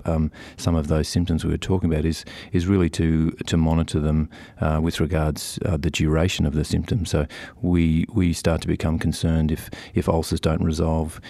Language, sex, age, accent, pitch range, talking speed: English, male, 40-59, Australian, 75-85 Hz, 195 wpm